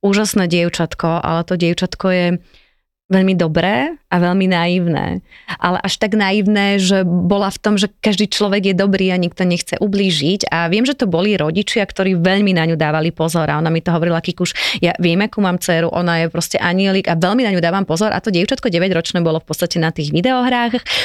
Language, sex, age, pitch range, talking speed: Slovak, female, 30-49, 175-220 Hz, 205 wpm